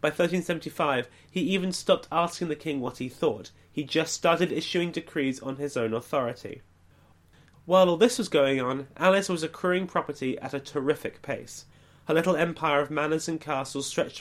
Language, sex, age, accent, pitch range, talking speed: English, male, 30-49, British, 140-175 Hz, 175 wpm